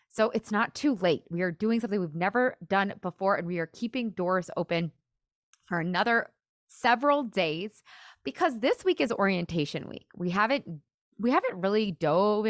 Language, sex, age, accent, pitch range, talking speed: English, female, 20-39, American, 180-240 Hz, 170 wpm